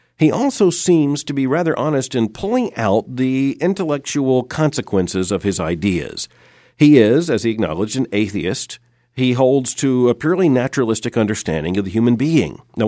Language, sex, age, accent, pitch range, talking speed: English, male, 50-69, American, 110-145 Hz, 165 wpm